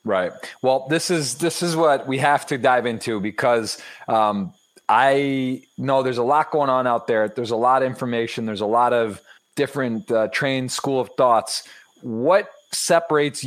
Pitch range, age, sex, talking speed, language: 110-135 Hz, 30-49, male, 180 wpm, English